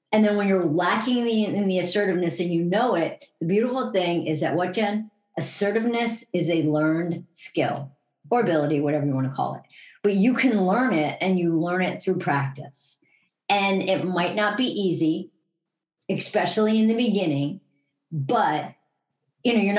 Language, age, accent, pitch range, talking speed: English, 50-69, American, 155-200 Hz, 175 wpm